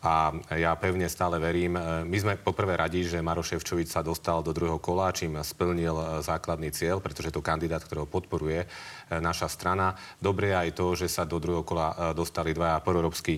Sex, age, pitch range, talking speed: male, 30-49, 80-90 Hz, 180 wpm